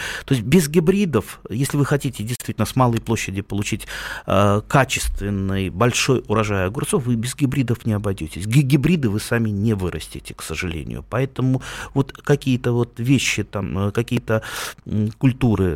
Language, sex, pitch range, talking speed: Russian, male, 95-130 Hz, 150 wpm